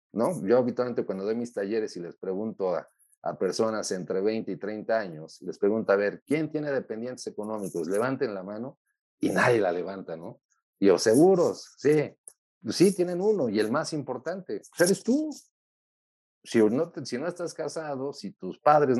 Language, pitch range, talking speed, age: Spanish, 100-150 Hz, 185 wpm, 40-59